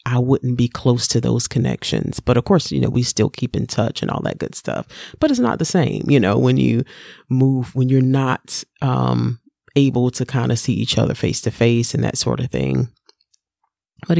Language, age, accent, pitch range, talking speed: English, 30-49, American, 125-155 Hz, 220 wpm